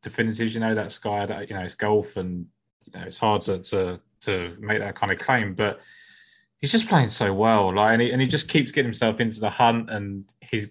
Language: English